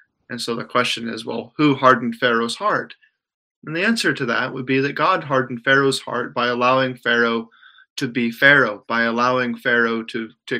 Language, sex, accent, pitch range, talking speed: English, male, American, 115-135 Hz, 185 wpm